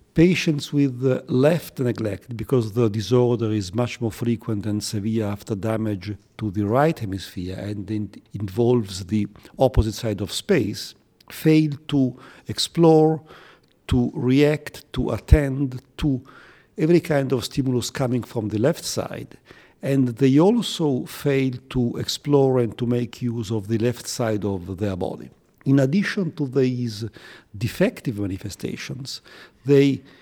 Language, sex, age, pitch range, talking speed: English, male, 50-69, 110-140 Hz, 135 wpm